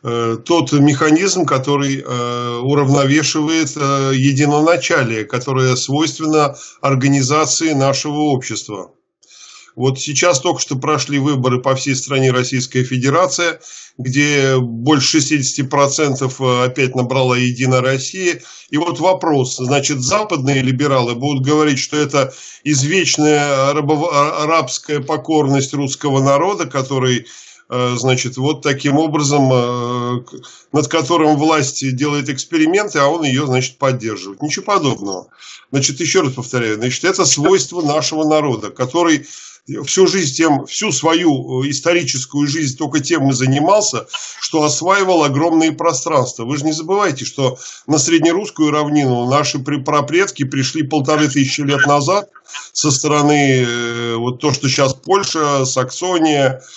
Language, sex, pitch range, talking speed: Russian, male, 130-155 Hz, 115 wpm